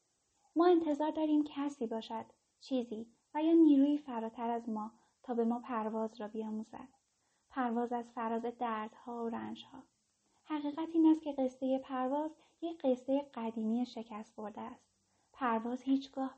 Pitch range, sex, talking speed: 220-265 Hz, female, 135 wpm